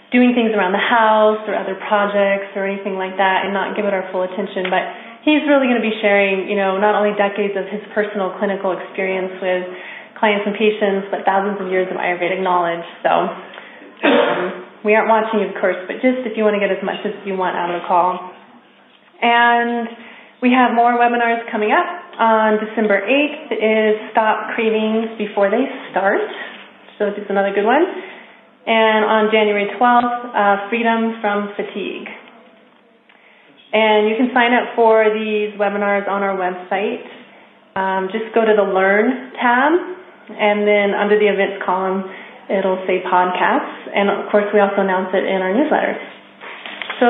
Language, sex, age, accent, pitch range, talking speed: English, female, 30-49, American, 195-230 Hz, 175 wpm